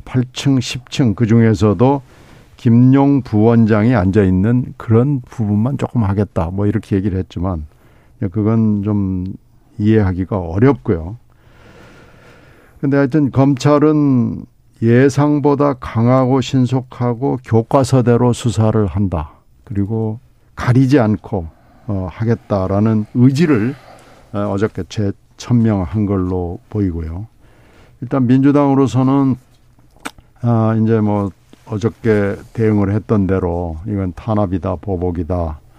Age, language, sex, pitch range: 60-79, Korean, male, 100-125 Hz